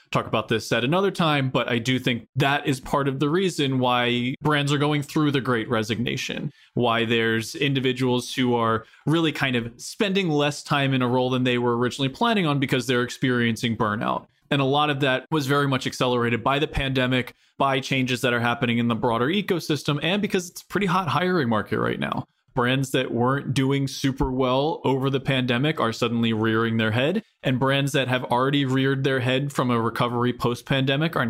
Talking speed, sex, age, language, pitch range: 205 wpm, male, 20-39, English, 120-145 Hz